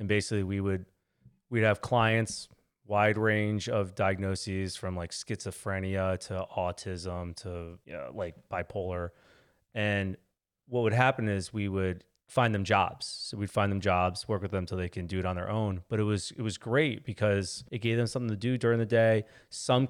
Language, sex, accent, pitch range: English, male, American, 100-125 Hz